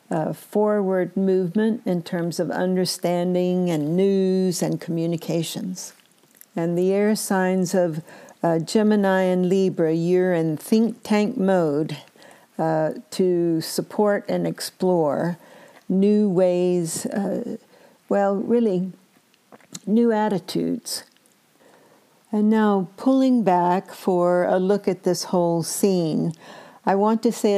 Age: 60-79